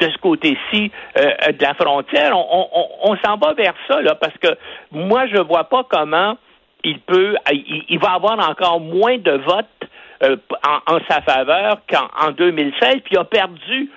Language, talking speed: French, 190 wpm